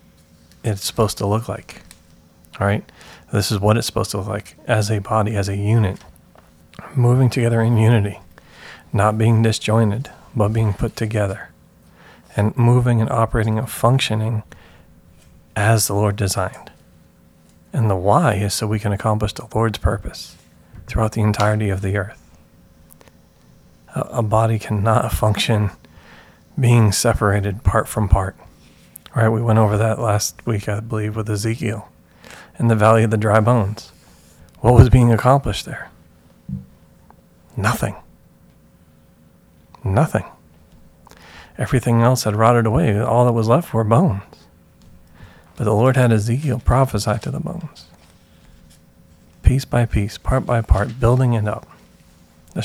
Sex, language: male, English